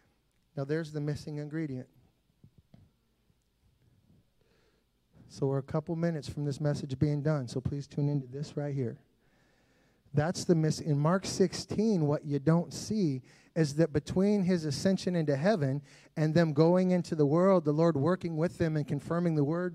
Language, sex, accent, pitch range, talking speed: English, male, American, 150-190 Hz, 165 wpm